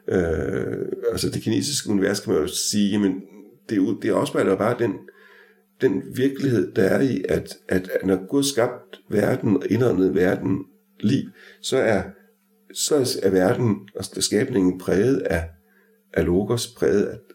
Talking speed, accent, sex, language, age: 155 wpm, native, male, Danish, 60-79